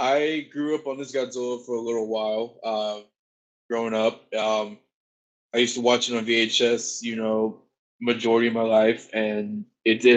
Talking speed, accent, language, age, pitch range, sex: 175 wpm, American, English, 20-39, 110-130 Hz, male